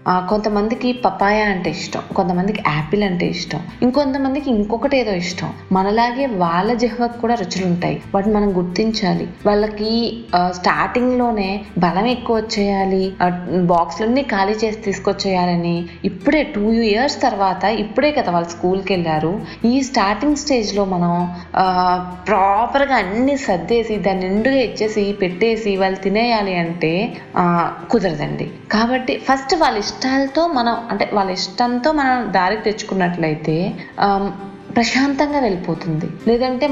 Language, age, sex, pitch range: Telugu, 20-39, female, 190-245 Hz